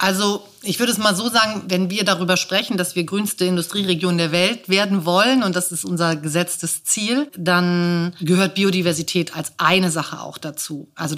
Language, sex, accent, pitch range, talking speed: German, female, German, 160-190 Hz, 185 wpm